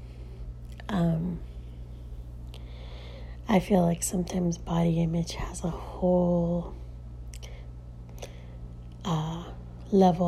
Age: 30-49